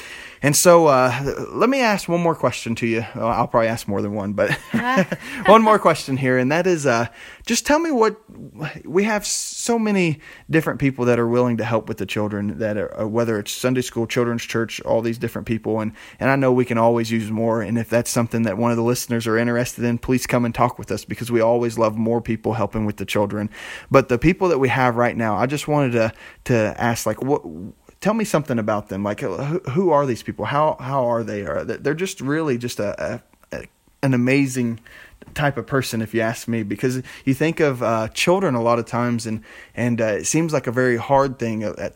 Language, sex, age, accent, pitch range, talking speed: English, male, 20-39, American, 110-140 Hz, 230 wpm